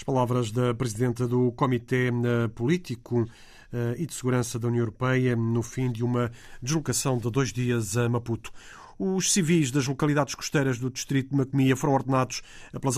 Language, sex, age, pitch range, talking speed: Portuguese, male, 40-59, 120-140 Hz, 160 wpm